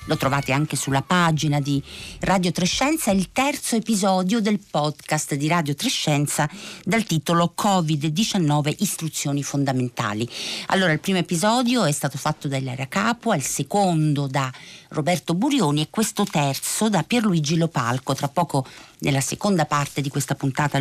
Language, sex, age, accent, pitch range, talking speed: Italian, female, 50-69, native, 145-190 Hz, 145 wpm